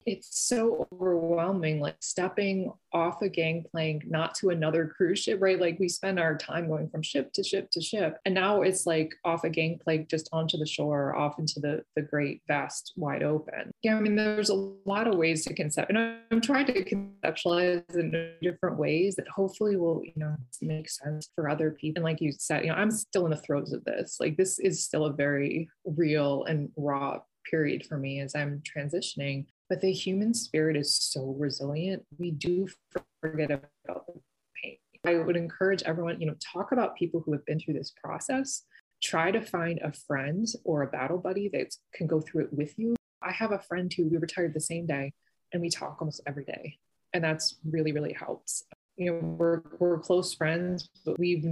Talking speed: 205 wpm